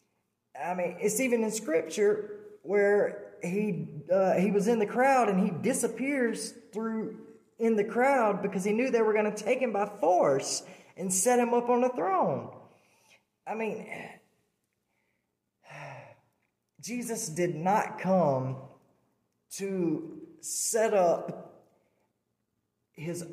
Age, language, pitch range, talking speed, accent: 20-39, English, 160-215 Hz, 125 wpm, American